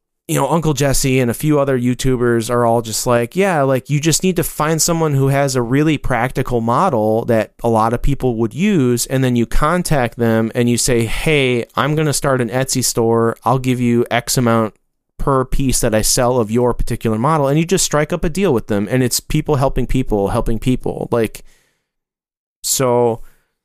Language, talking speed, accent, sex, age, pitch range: English, 210 wpm, American, male, 30-49, 120-150 Hz